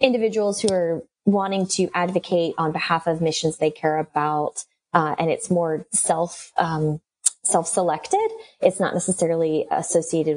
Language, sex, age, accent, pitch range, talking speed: English, female, 20-39, American, 160-200 Hz, 135 wpm